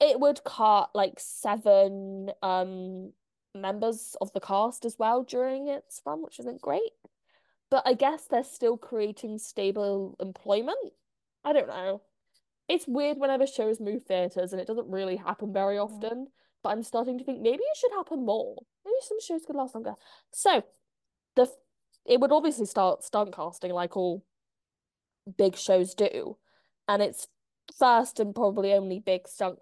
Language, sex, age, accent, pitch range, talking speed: English, female, 10-29, British, 185-260 Hz, 160 wpm